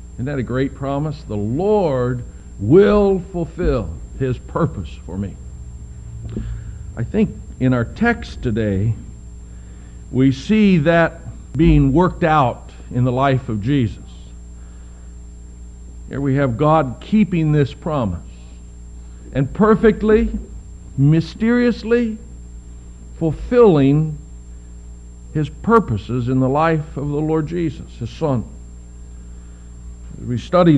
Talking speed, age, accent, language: 105 wpm, 60-79, American, English